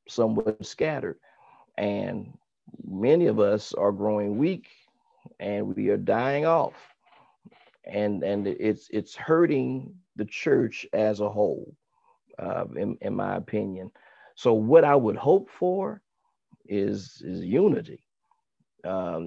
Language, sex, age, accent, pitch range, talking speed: English, male, 50-69, American, 110-165 Hz, 120 wpm